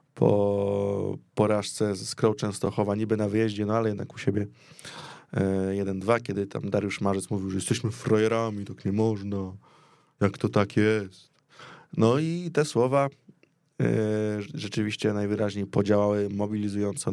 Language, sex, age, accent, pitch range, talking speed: Polish, male, 20-39, native, 100-120 Hz, 135 wpm